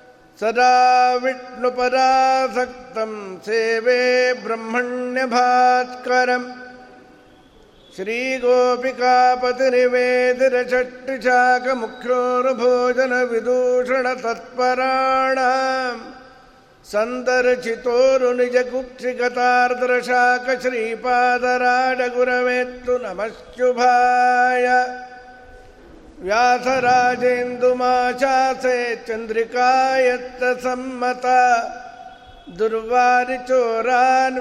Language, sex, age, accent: Kannada, male, 50-69, native